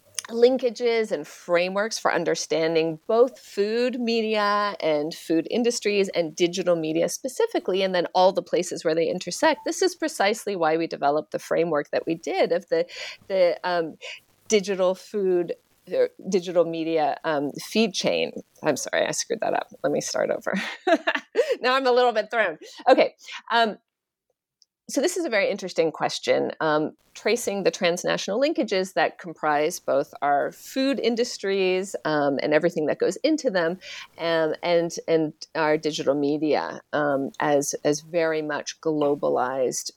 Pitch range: 160-235 Hz